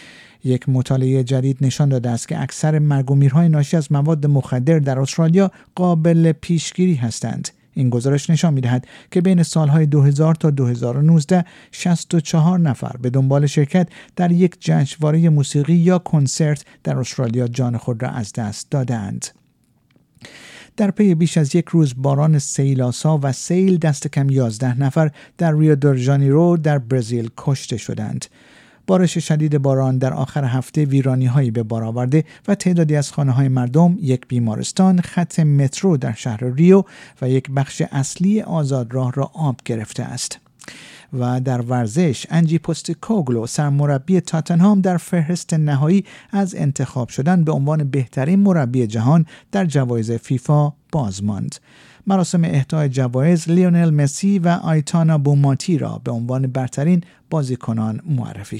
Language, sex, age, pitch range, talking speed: Persian, male, 50-69, 130-165 Hz, 140 wpm